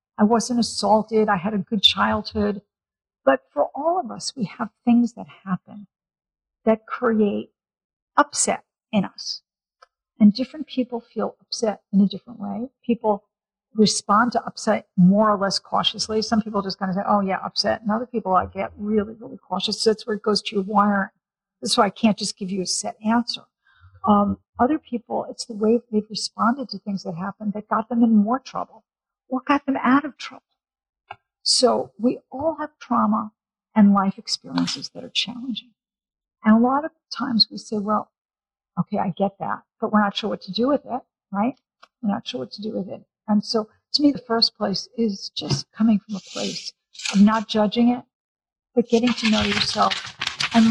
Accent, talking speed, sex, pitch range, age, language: American, 195 wpm, female, 205-240 Hz, 50-69, English